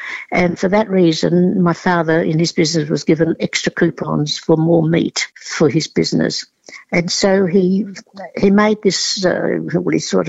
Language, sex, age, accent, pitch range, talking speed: English, female, 60-79, British, 175-220 Hz, 170 wpm